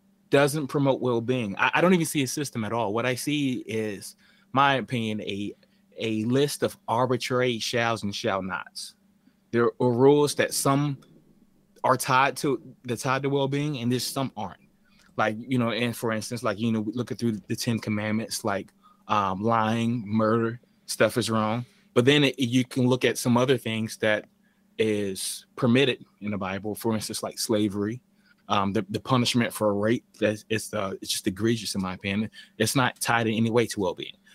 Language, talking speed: English, 190 wpm